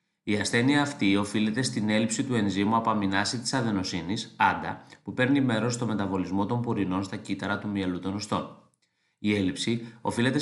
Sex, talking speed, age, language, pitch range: male, 160 wpm, 30-49, Greek, 100-125 Hz